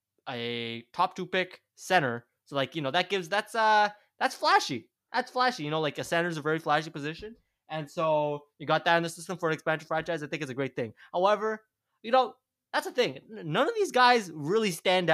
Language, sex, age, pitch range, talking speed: English, male, 20-39, 145-190 Hz, 225 wpm